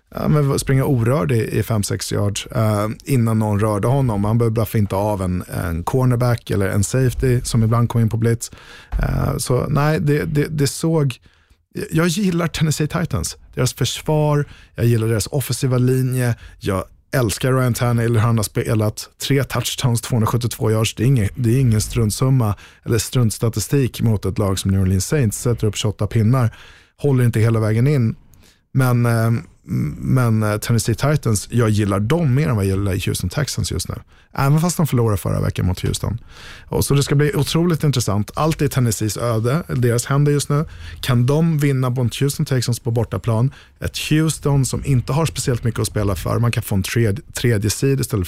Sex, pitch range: male, 105-140 Hz